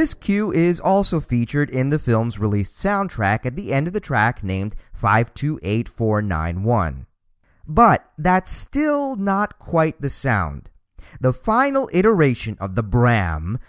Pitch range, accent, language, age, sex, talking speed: 105-170 Hz, American, English, 40-59, male, 135 wpm